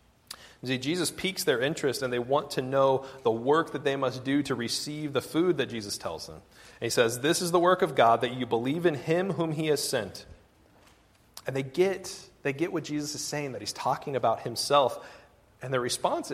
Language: English